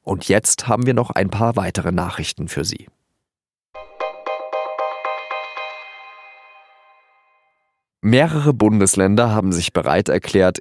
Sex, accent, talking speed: male, German, 95 wpm